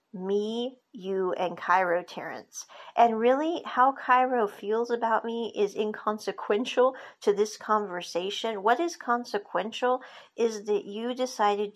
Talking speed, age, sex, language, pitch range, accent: 125 wpm, 40-59, female, English, 205-255 Hz, American